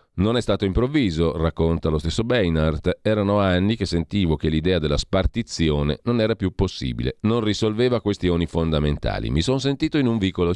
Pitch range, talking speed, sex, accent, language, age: 80-105 Hz, 170 wpm, male, native, Italian, 40-59